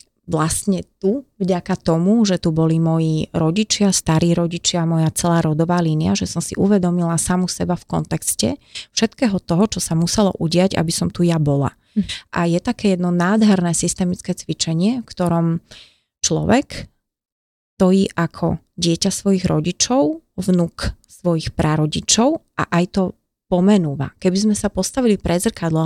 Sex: female